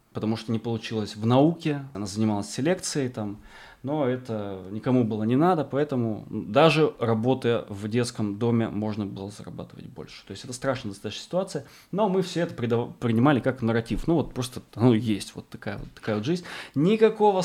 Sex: male